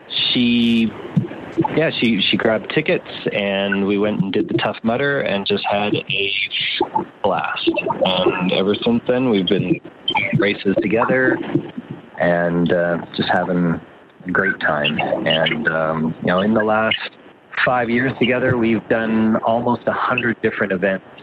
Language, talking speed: English, 145 wpm